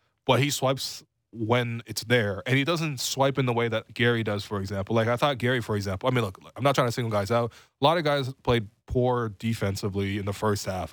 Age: 20-39